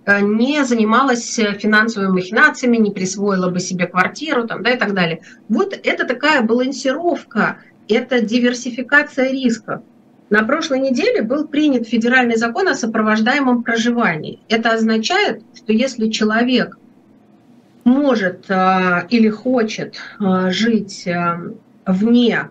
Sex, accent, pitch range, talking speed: female, native, 200-250 Hz, 110 wpm